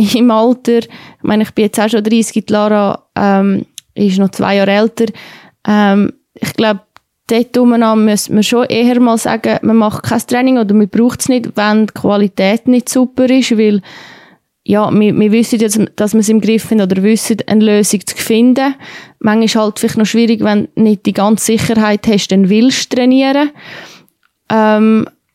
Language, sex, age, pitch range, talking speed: German, female, 20-39, 205-230 Hz, 185 wpm